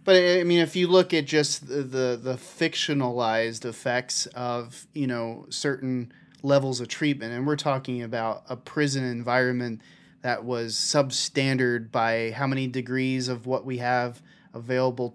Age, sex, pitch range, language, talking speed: 30-49, male, 120-140 Hz, English, 155 wpm